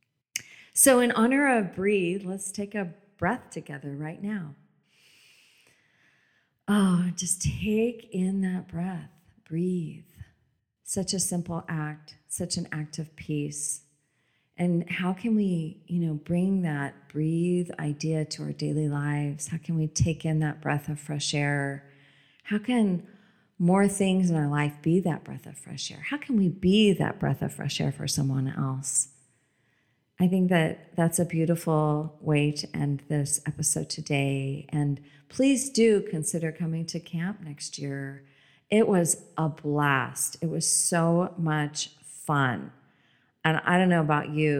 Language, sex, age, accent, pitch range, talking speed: English, female, 40-59, American, 150-180 Hz, 150 wpm